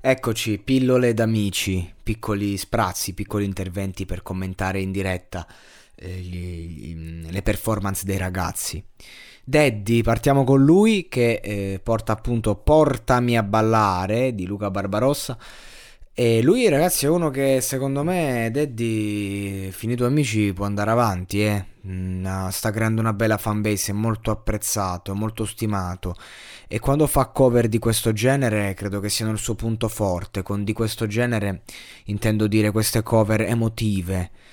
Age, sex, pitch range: 20-39, male, 100-125 Hz